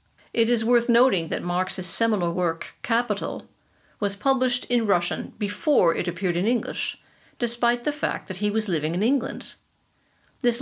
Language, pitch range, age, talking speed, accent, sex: English, 180-225 Hz, 50-69, 160 wpm, American, female